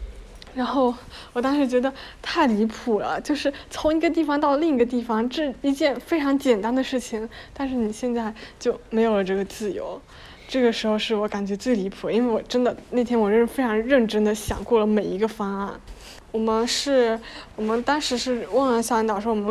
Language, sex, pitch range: Chinese, female, 215-250 Hz